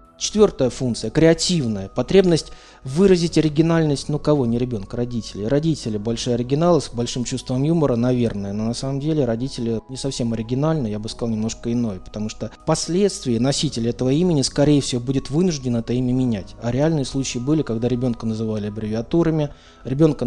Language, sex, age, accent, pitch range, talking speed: Russian, male, 20-39, native, 115-150 Hz, 160 wpm